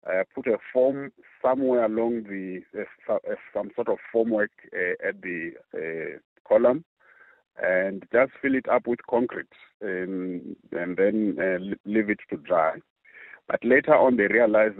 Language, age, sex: English, 50-69, male